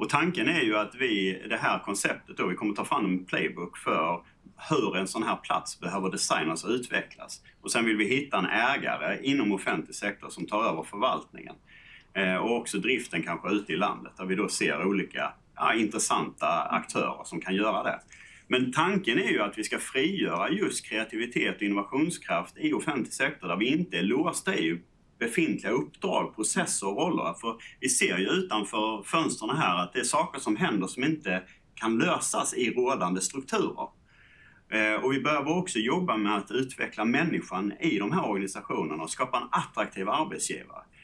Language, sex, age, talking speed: Swedish, male, 30-49, 180 wpm